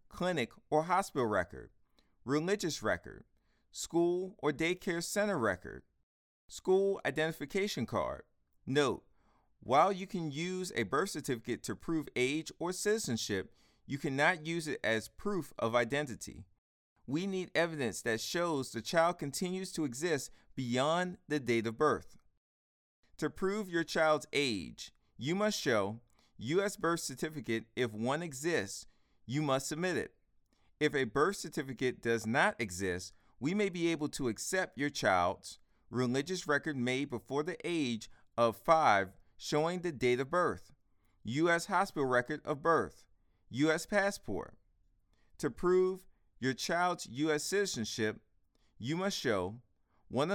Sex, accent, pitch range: male, American, 115-175 Hz